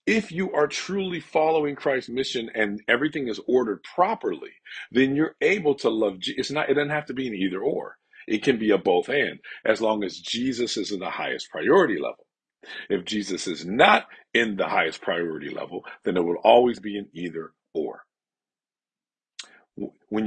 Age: 50-69